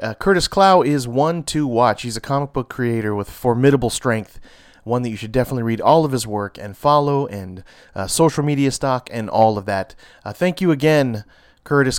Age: 30-49